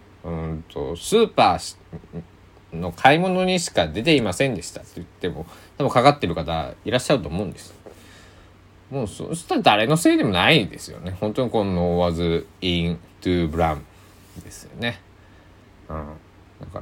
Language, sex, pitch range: Japanese, male, 90-105 Hz